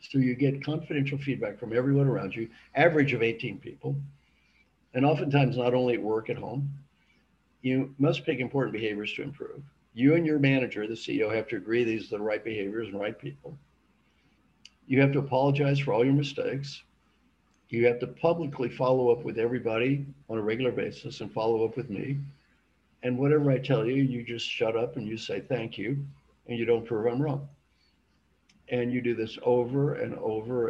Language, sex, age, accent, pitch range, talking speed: English, male, 50-69, American, 115-140 Hz, 190 wpm